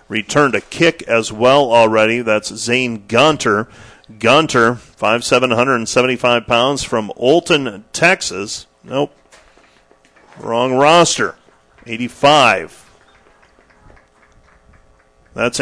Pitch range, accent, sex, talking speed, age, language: 115-145 Hz, American, male, 90 wpm, 40-59, English